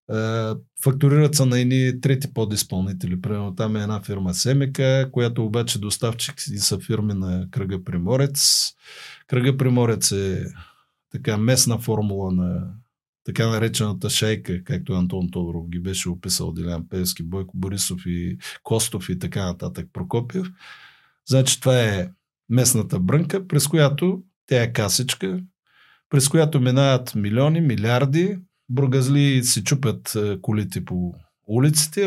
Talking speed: 125 wpm